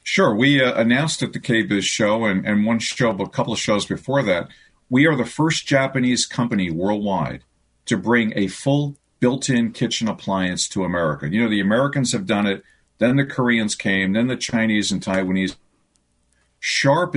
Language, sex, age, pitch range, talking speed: English, male, 50-69, 95-125 Hz, 185 wpm